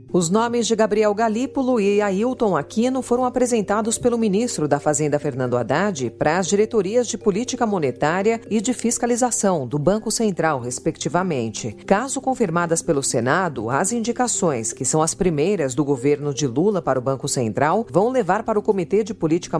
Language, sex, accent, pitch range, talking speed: Portuguese, female, Brazilian, 145-215 Hz, 165 wpm